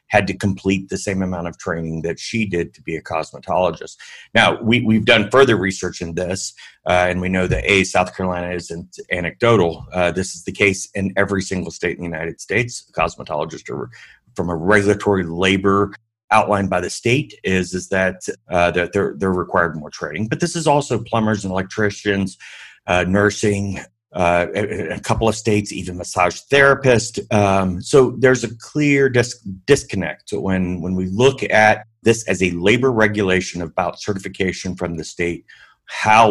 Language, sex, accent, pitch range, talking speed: English, male, American, 90-105 Hz, 175 wpm